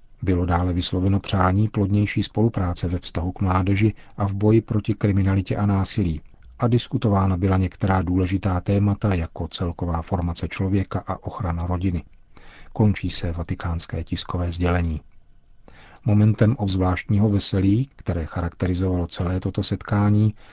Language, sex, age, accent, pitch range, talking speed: Czech, male, 40-59, native, 90-110 Hz, 125 wpm